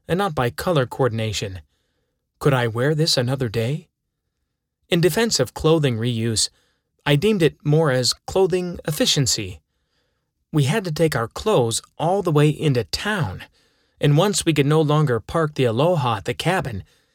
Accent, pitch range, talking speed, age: American, 115-155 Hz, 160 wpm, 30-49